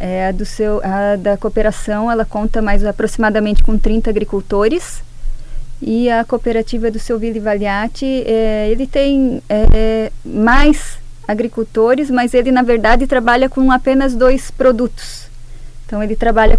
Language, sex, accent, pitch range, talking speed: Portuguese, female, Brazilian, 210-255 Hz, 140 wpm